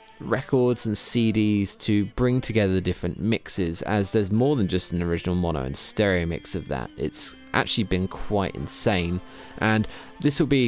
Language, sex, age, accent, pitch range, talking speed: English, male, 20-39, British, 95-130 Hz, 175 wpm